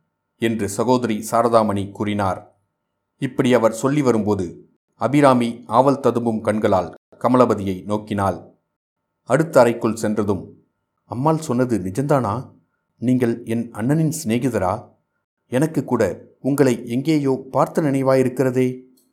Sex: male